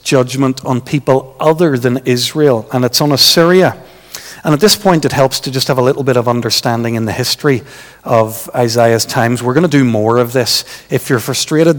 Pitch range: 120-145 Hz